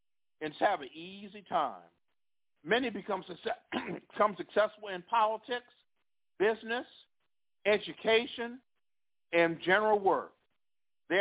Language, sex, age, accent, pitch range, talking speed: English, male, 50-69, American, 170-225 Hz, 95 wpm